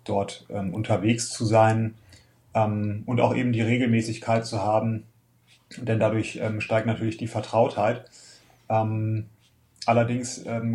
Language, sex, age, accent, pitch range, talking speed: German, male, 30-49, German, 110-120 Hz, 130 wpm